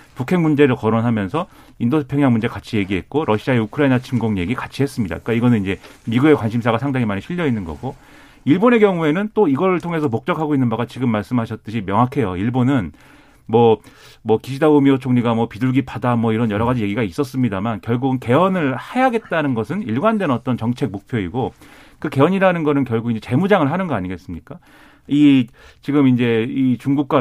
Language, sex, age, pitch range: Korean, male, 40-59, 115-150 Hz